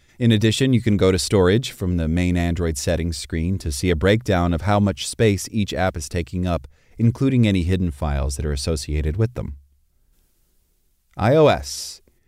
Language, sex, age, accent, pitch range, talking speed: English, male, 30-49, American, 80-110 Hz, 175 wpm